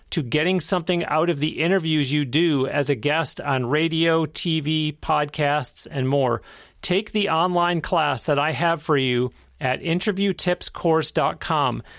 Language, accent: English, American